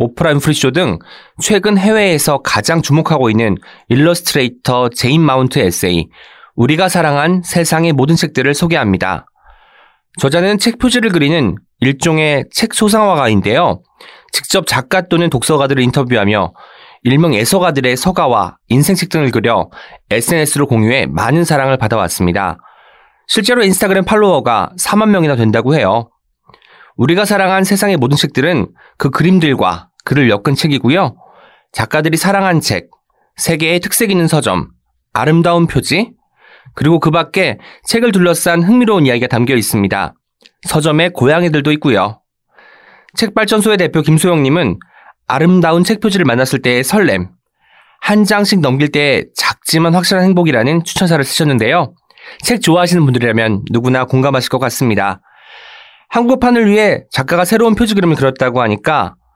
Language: Korean